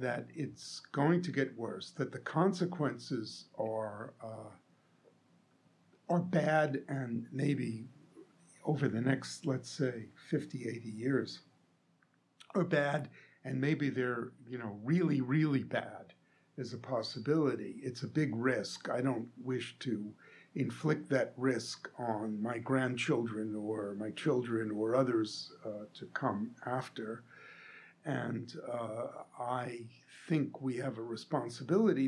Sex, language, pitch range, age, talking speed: male, English, 115-145 Hz, 50-69, 125 wpm